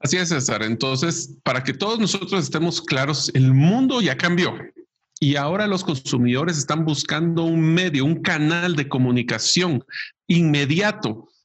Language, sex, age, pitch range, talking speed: Spanish, male, 50-69, 135-185 Hz, 140 wpm